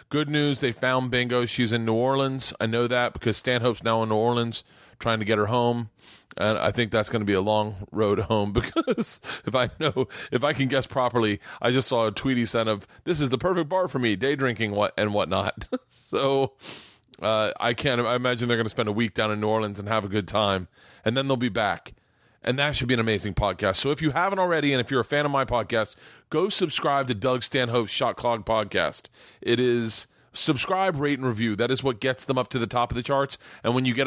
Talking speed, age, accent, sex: 240 wpm, 30-49, American, male